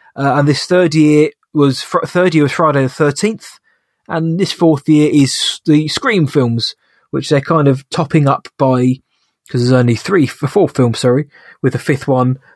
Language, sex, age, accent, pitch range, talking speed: English, male, 20-39, British, 130-150 Hz, 185 wpm